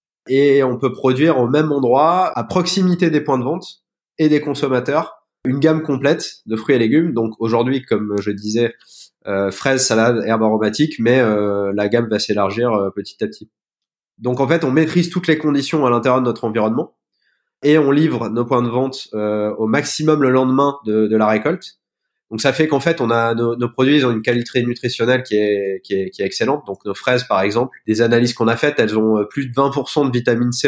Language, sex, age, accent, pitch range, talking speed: French, male, 20-39, French, 110-140 Hz, 215 wpm